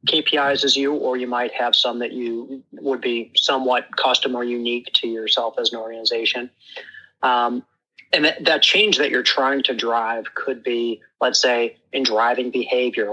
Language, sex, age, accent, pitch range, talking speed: English, male, 30-49, American, 120-140 Hz, 175 wpm